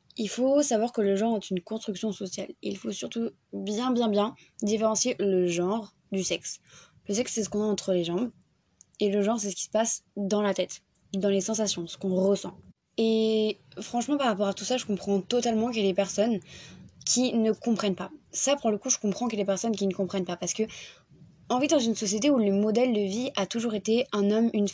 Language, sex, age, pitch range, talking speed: French, female, 20-39, 190-225 Hz, 245 wpm